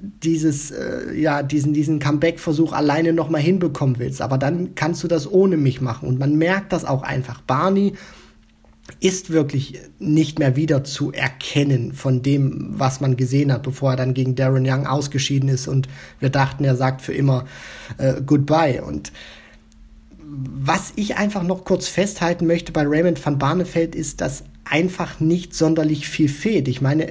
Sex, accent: male, German